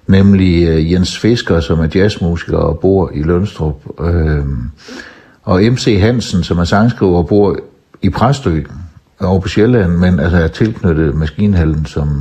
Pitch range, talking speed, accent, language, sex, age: 80-100 Hz, 150 wpm, native, Danish, male, 60-79